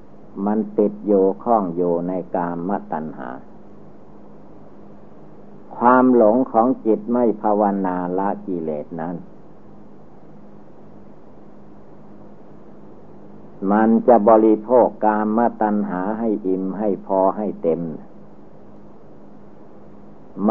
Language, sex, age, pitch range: Thai, male, 60-79, 95-115 Hz